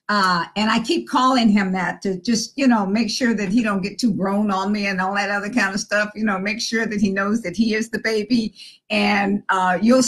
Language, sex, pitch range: English, female, 200-240 Hz